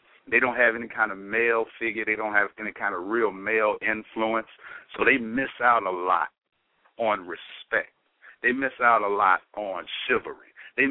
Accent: American